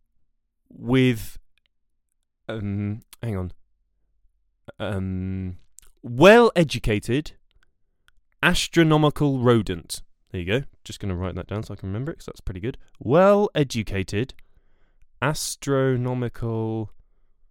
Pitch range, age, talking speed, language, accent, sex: 95-135 Hz, 20-39, 95 wpm, English, British, male